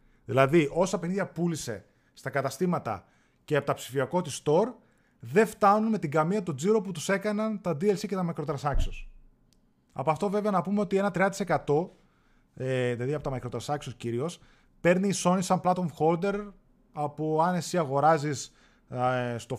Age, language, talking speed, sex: 30-49, Greek, 155 wpm, male